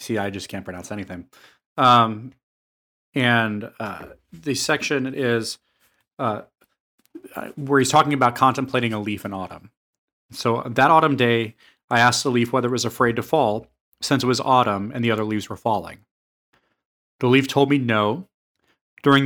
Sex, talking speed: male, 160 wpm